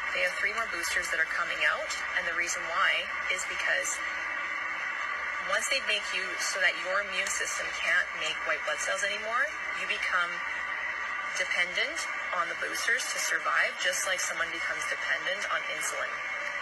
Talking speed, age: 165 wpm, 20-39